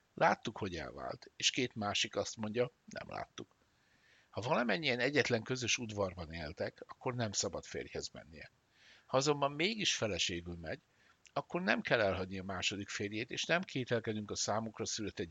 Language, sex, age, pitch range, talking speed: Hungarian, male, 60-79, 95-125 Hz, 155 wpm